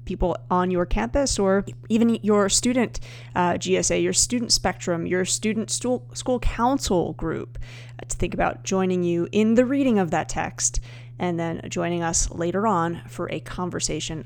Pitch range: 165-210 Hz